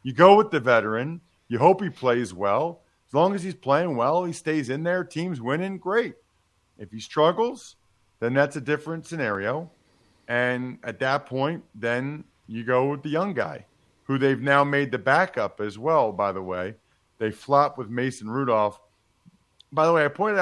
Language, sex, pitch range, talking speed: English, male, 115-165 Hz, 185 wpm